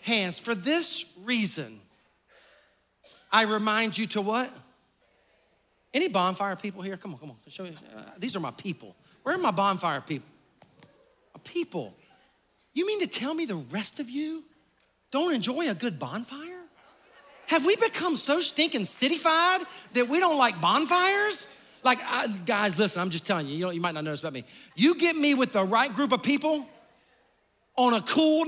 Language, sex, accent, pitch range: English, male, American, 200-280 Hz